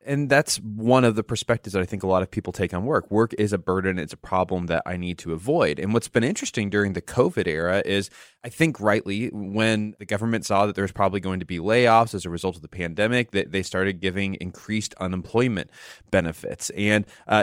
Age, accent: 20-39, American